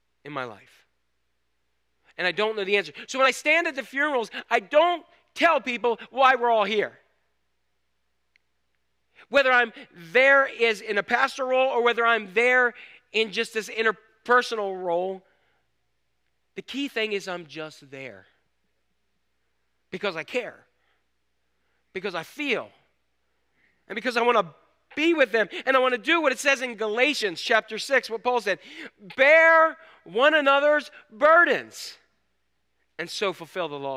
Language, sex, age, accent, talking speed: English, male, 40-59, American, 150 wpm